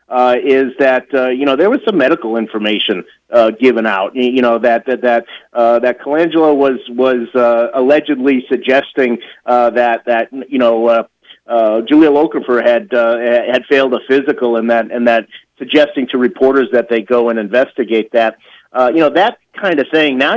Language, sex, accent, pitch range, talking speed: English, male, American, 120-150 Hz, 185 wpm